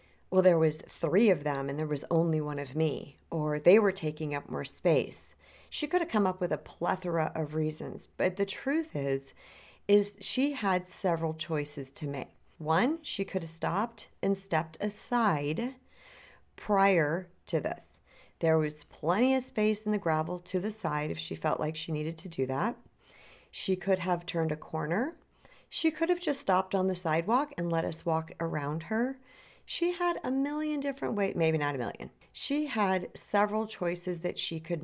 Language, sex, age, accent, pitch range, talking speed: English, female, 40-59, American, 160-210 Hz, 190 wpm